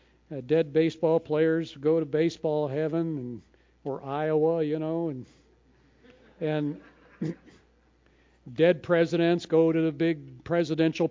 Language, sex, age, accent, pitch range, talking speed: English, male, 50-69, American, 135-180 Hz, 120 wpm